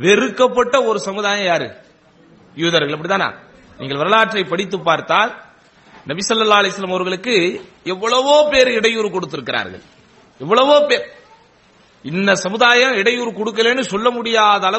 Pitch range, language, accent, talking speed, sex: 205-255 Hz, English, Indian, 105 wpm, male